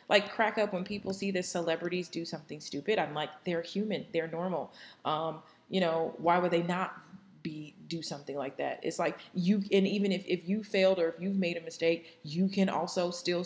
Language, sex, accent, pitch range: English, female, American, 170-195 Hz